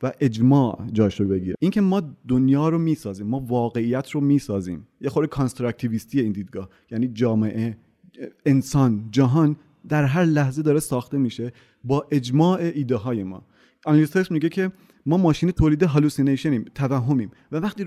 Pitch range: 115-155 Hz